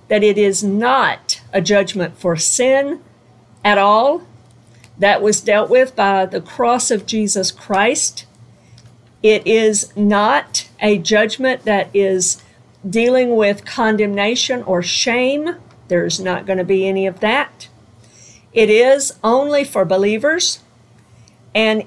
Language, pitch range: English, 190-240 Hz